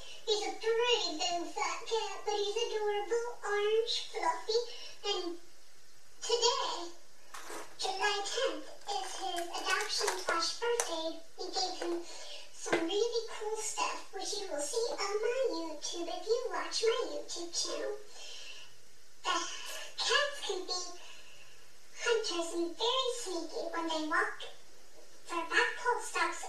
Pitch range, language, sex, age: 345-460 Hz, English, male, 40-59